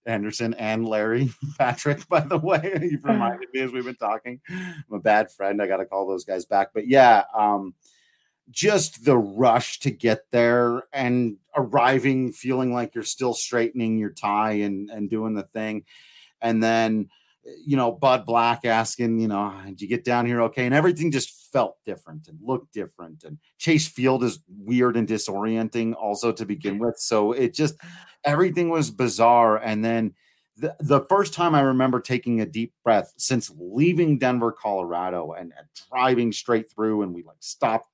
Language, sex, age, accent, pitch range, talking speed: English, male, 30-49, American, 105-130 Hz, 180 wpm